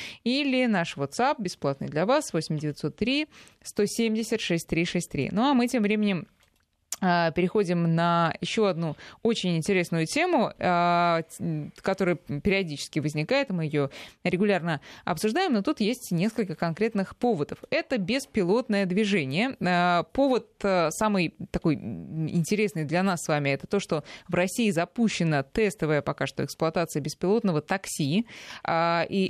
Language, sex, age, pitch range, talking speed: Russian, female, 20-39, 160-210 Hz, 120 wpm